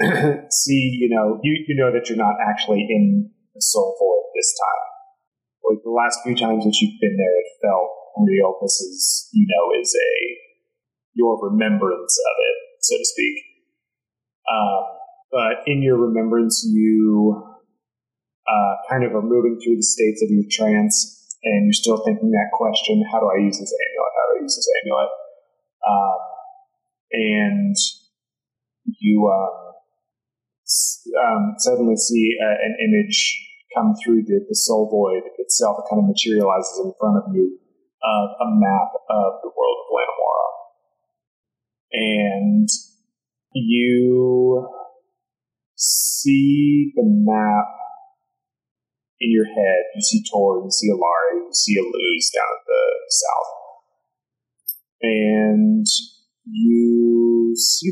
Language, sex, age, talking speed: English, male, 30-49, 145 wpm